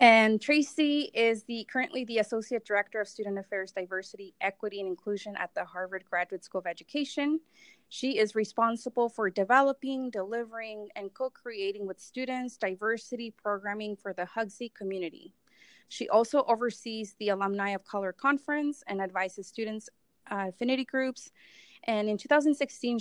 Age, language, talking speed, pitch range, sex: 20-39, English, 140 wpm, 195-245 Hz, female